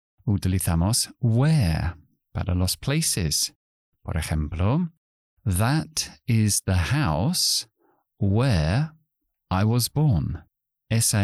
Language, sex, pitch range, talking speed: Spanish, male, 85-125 Hz, 85 wpm